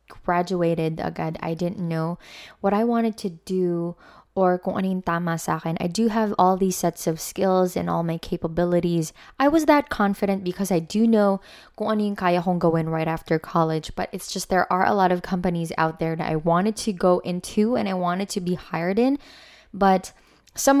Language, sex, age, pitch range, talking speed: Filipino, female, 20-39, 170-215 Hz, 195 wpm